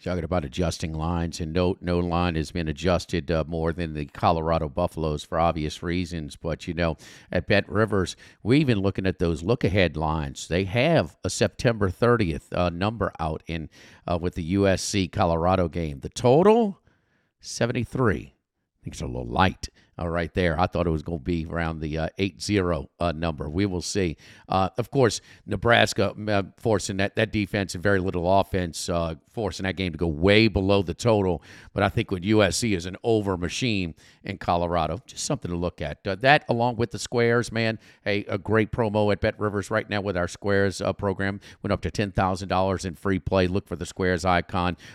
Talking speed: 200 wpm